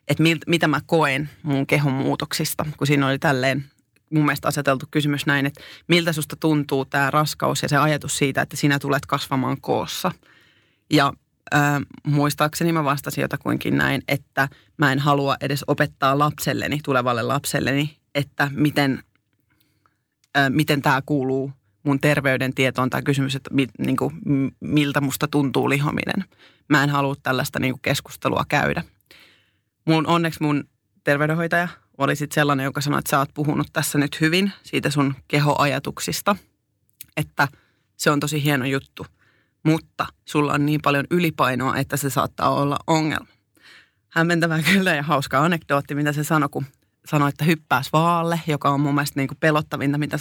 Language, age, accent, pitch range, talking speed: Finnish, 30-49, native, 135-155 Hz, 155 wpm